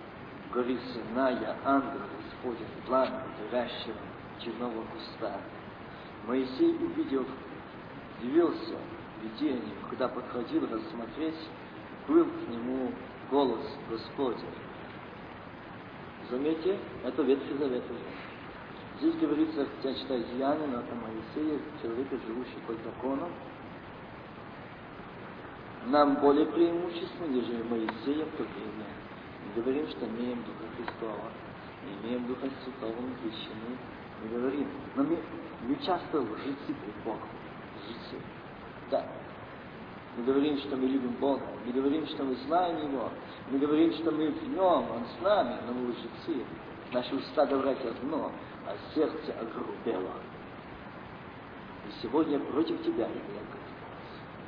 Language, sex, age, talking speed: Russian, male, 50-69, 110 wpm